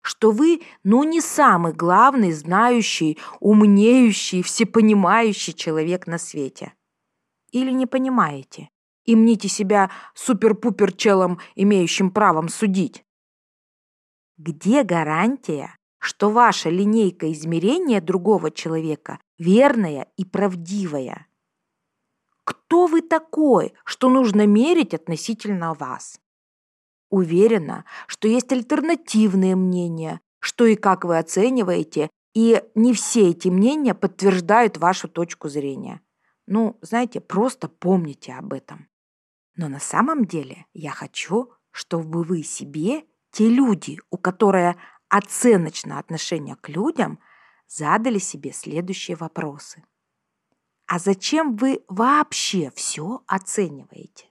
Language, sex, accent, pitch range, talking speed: Russian, female, native, 170-230 Hz, 105 wpm